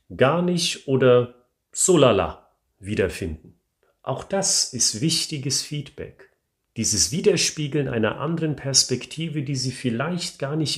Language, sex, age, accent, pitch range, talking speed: German, male, 40-59, German, 105-145 Hz, 110 wpm